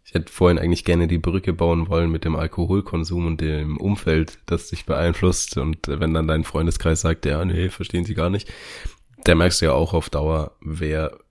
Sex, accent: male, German